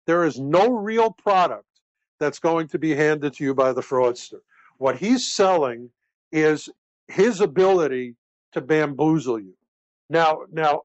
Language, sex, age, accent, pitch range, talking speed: English, male, 50-69, American, 140-175 Hz, 145 wpm